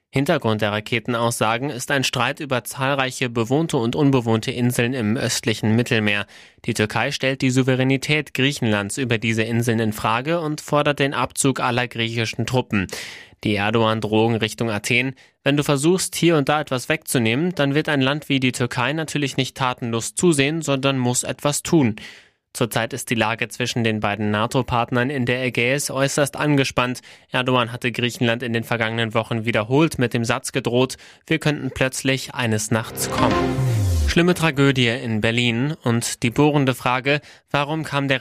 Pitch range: 115-140 Hz